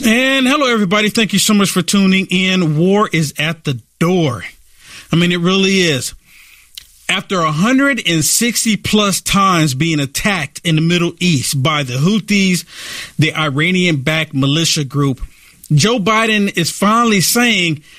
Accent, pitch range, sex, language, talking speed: American, 155-215 Hz, male, English, 145 wpm